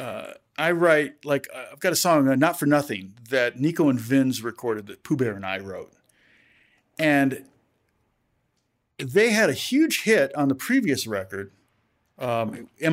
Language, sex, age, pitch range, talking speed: English, male, 50-69, 115-145 Hz, 160 wpm